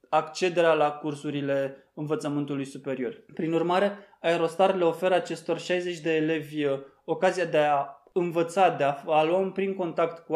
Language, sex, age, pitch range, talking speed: Romanian, male, 20-39, 150-185 Hz, 145 wpm